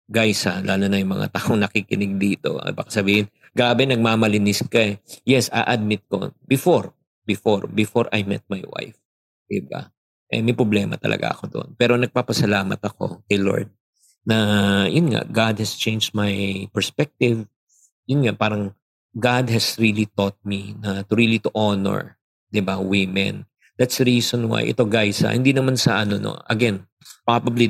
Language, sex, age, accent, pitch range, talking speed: Filipino, male, 50-69, native, 100-120 Hz, 165 wpm